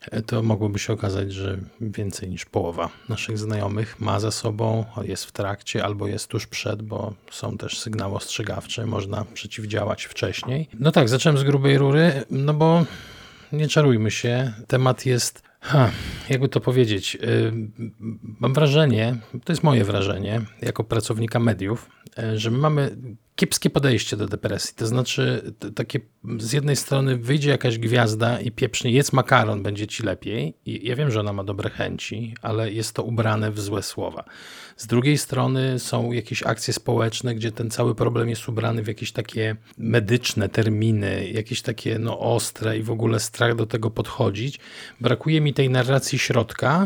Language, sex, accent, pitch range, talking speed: Polish, male, native, 110-125 Hz, 160 wpm